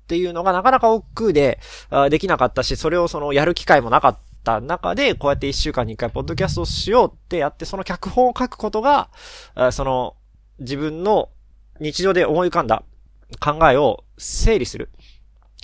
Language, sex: Japanese, male